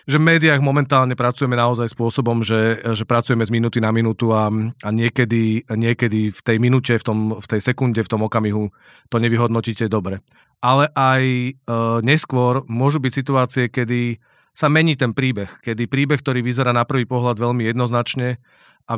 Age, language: 40-59, Slovak